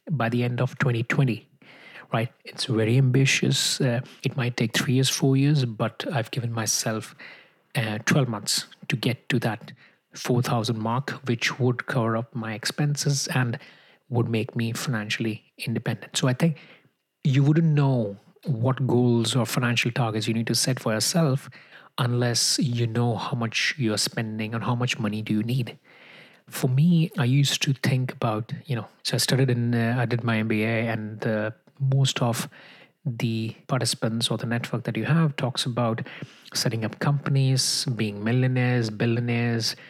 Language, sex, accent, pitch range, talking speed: English, male, Indian, 115-140 Hz, 165 wpm